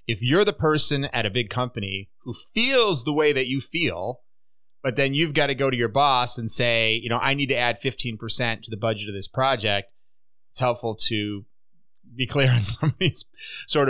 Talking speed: 210 wpm